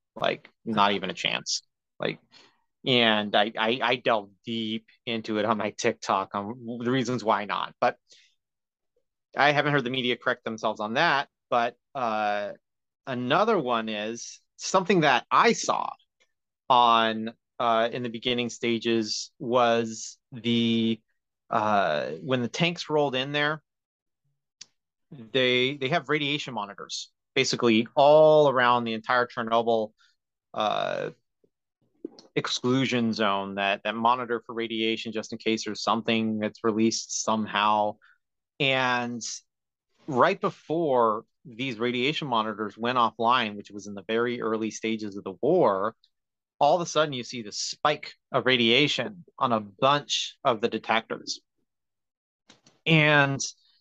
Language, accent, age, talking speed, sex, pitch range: English, American, 30-49, 130 wpm, male, 110-130 Hz